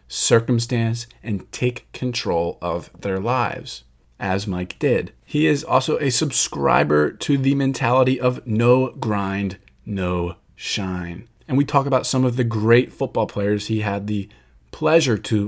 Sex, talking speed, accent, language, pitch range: male, 145 wpm, American, English, 95-125 Hz